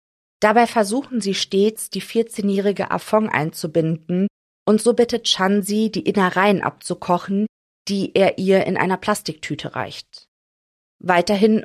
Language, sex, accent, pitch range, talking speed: German, female, German, 175-210 Hz, 120 wpm